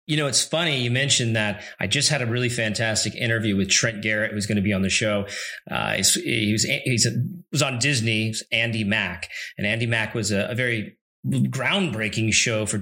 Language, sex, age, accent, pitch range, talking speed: English, male, 30-49, American, 110-135 Hz, 215 wpm